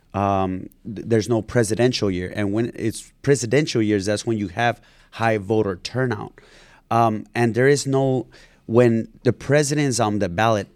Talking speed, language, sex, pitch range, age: 160 wpm, English, male, 100-125 Hz, 30-49